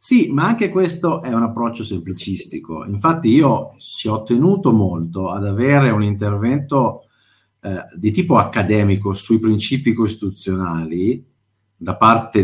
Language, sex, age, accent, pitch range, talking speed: Italian, male, 50-69, native, 95-140 Hz, 130 wpm